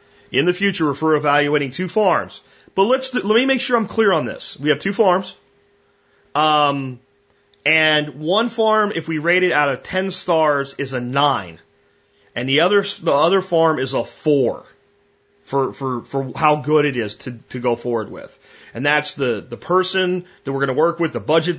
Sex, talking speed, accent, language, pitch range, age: male, 195 wpm, American, French, 140-190 Hz, 30-49